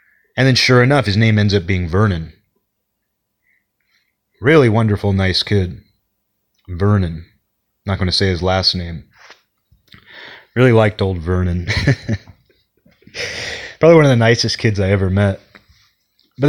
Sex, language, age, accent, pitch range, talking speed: male, English, 30-49, American, 100-135 Hz, 130 wpm